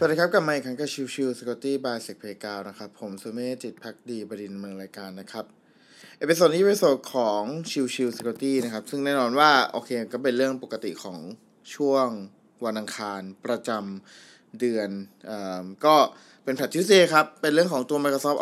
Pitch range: 110-145 Hz